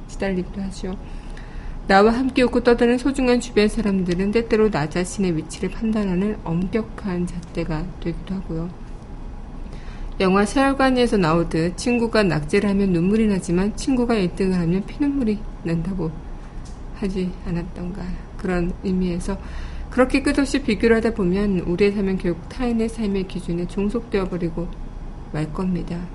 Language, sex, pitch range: Korean, female, 175-210 Hz